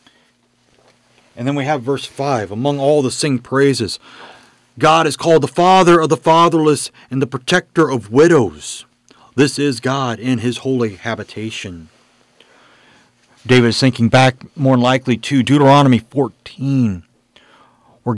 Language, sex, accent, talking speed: English, male, American, 135 wpm